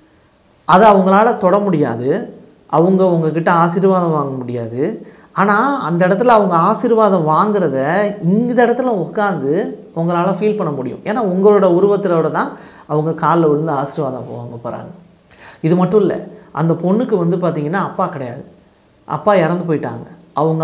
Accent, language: native, Tamil